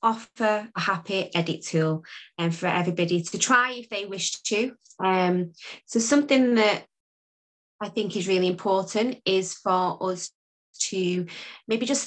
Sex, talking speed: female, 145 wpm